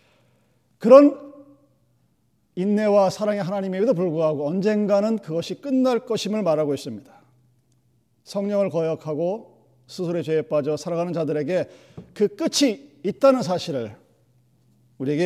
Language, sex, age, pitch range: Korean, male, 40-59, 130-175 Hz